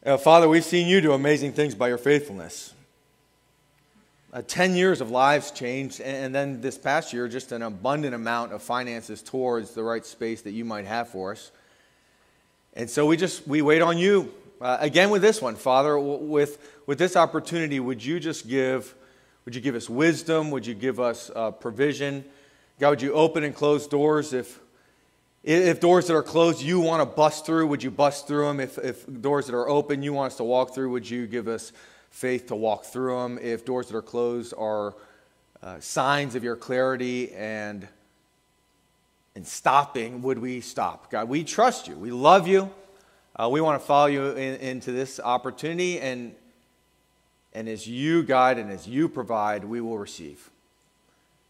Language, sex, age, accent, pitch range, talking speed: English, male, 30-49, American, 120-150 Hz, 190 wpm